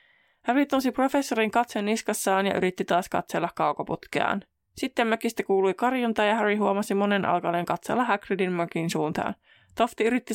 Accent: native